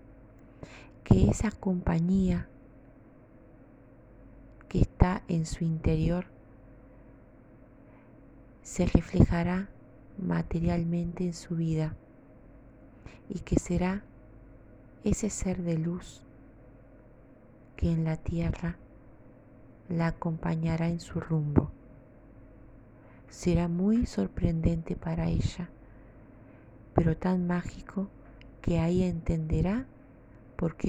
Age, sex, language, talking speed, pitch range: 30-49, female, Spanish, 80 wpm, 125-170 Hz